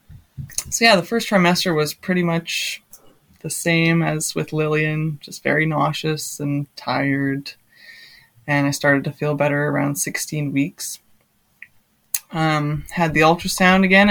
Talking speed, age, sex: 135 wpm, 20-39, female